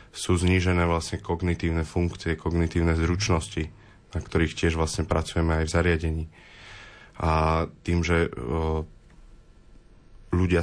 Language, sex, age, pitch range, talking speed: Slovak, male, 20-39, 80-90 Hz, 105 wpm